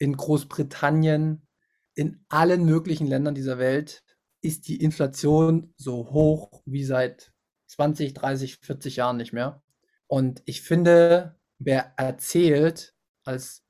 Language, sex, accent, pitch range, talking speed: German, male, German, 135-165 Hz, 120 wpm